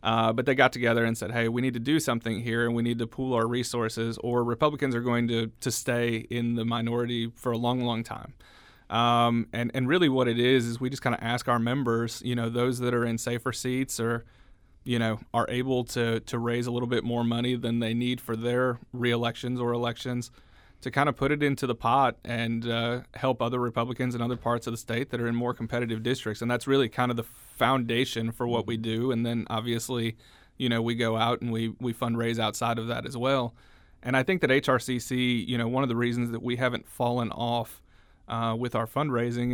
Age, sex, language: 30-49, male, English